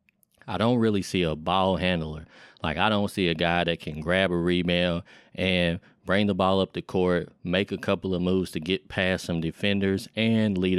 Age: 30-49